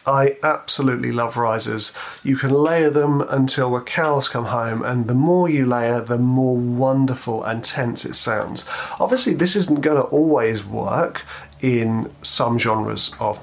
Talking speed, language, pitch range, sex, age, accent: 155 wpm, English, 110-135 Hz, male, 30-49, British